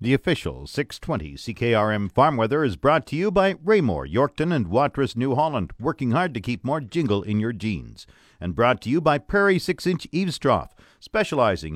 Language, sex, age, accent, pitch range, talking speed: English, male, 50-69, American, 110-150 Hz, 185 wpm